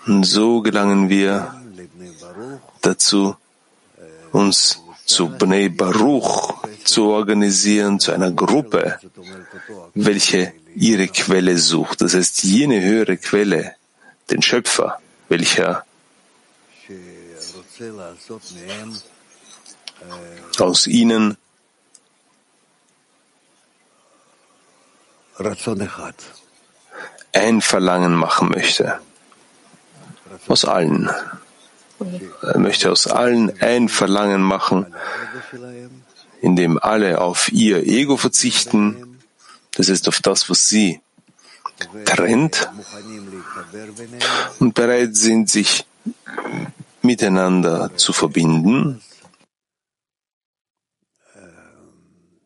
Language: German